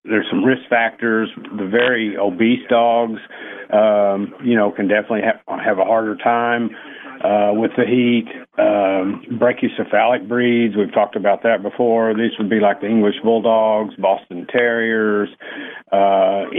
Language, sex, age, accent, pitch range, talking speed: English, male, 50-69, American, 100-115 Hz, 145 wpm